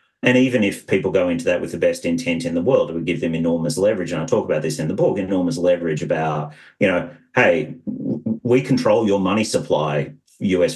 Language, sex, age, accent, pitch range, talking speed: English, male, 40-59, Australian, 85-115 Hz, 225 wpm